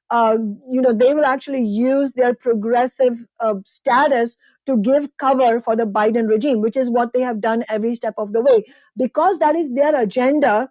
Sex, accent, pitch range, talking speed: female, Indian, 235-275 Hz, 190 wpm